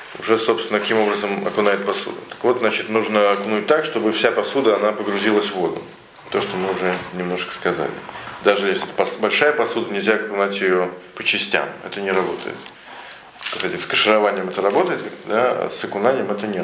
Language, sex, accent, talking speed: Russian, male, native, 175 wpm